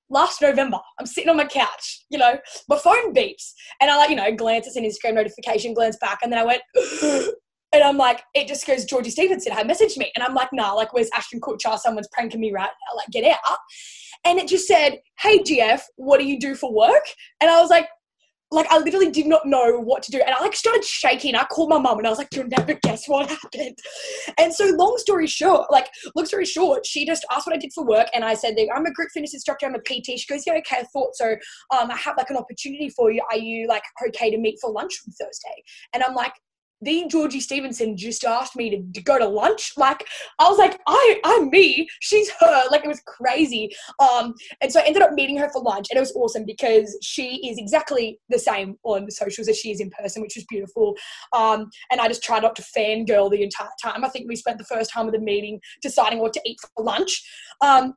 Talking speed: 245 wpm